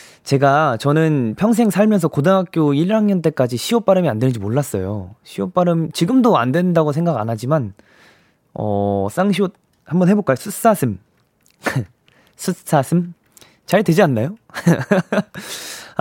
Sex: male